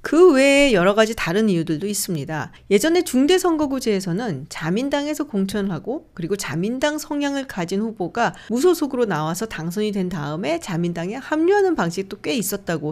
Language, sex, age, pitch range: Korean, female, 40-59, 190-290 Hz